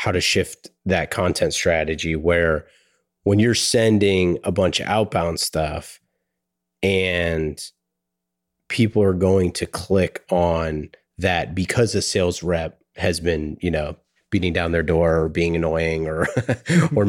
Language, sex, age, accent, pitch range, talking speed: English, male, 30-49, American, 80-95 Hz, 140 wpm